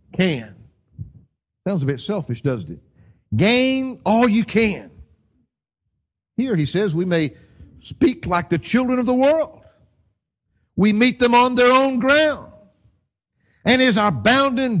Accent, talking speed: American, 140 wpm